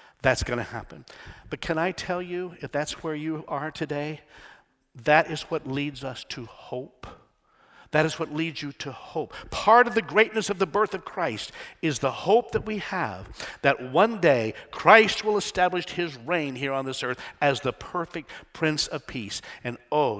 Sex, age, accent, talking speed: male, 50-69, American, 190 wpm